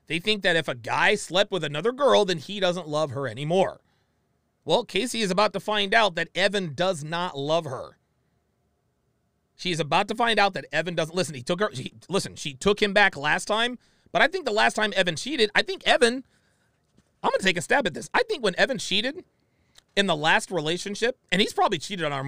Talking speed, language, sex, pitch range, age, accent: 215 wpm, English, male, 155-210 Hz, 30-49, American